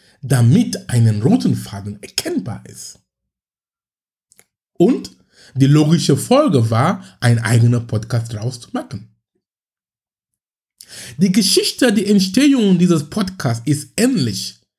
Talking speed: 95 wpm